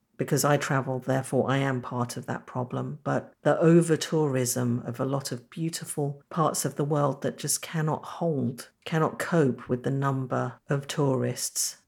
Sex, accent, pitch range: female, British, 135-170 Hz